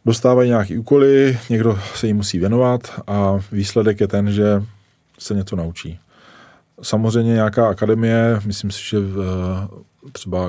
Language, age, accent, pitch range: Czech, 20-39, native, 95-105 Hz